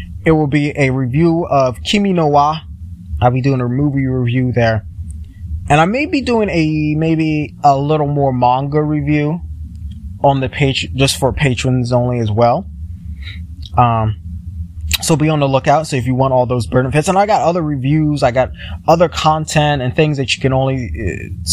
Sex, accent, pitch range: male, American, 95-135 Hz